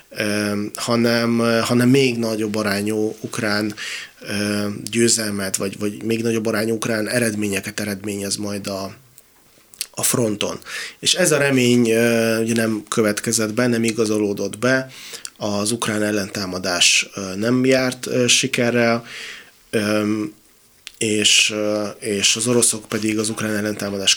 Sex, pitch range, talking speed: male, 105-115 Hz, 110 wpm